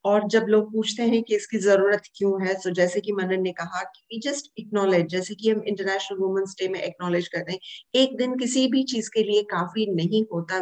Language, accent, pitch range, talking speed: Hindi, native, 190-245 Hz, 185 wpm